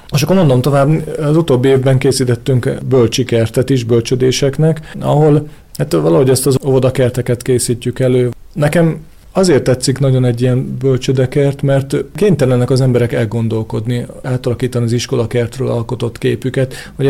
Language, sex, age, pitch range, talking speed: Hungarian, male, 40-59, 115-130 Hz, 135 wpm